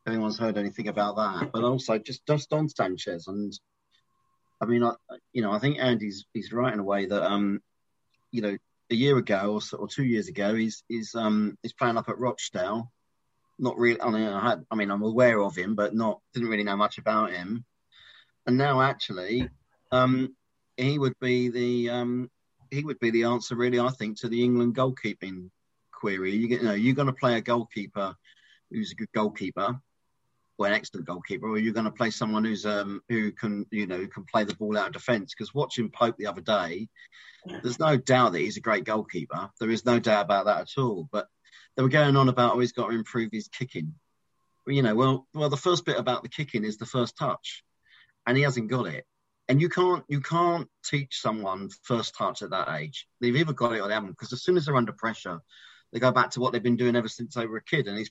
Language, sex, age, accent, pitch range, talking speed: English, male, 40-59, British, 110-130 Hz, 230 wpm